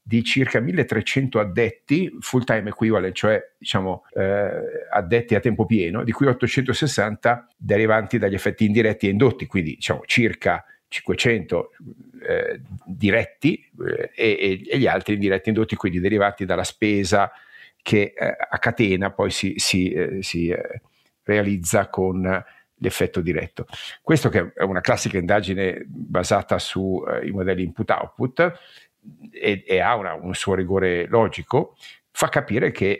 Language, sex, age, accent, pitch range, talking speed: Italian, male, 50-69, native, 95-120 Hz, 140 wpm